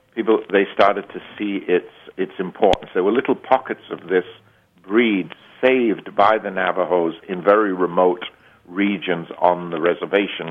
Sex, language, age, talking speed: male, English, 50-69, 155 wpm